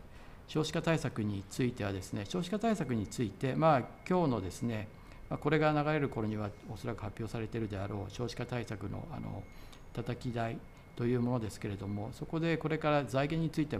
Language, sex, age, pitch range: Japanese, male, 50-69, 110-145 Hz